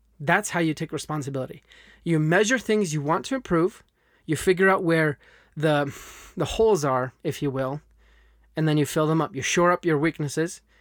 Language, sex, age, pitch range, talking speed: English, male, 20-39, 145-190 Hz, 190 wpm